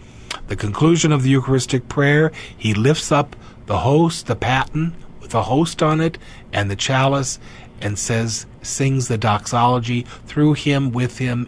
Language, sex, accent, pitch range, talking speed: English, male, American, 115-135 Hz, 155 wpm